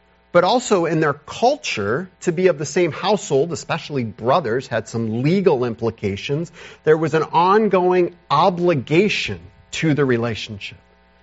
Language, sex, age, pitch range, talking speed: English, male, 40-59, 105-170 Hz, 135 wpm